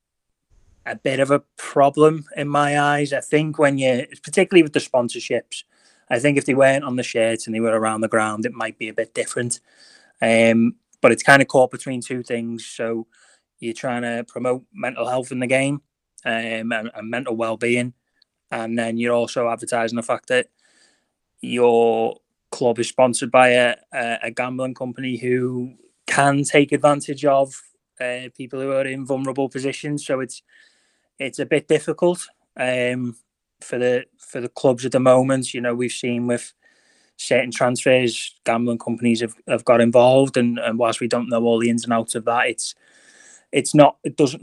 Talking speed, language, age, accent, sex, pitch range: 180 wpm, English, 20-39, British, male, 120-140 Hz